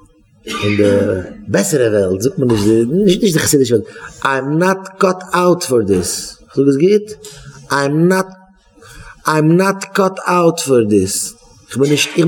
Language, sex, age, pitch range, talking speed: English, male, 30-49, 140-185 Hz, 100 wpm